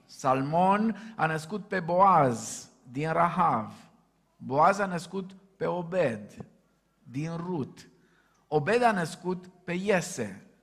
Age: 50-69